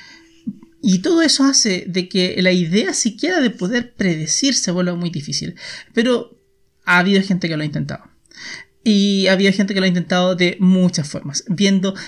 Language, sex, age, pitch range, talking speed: Spanish, male, 30-49, 170-200 Hz, 180 wpm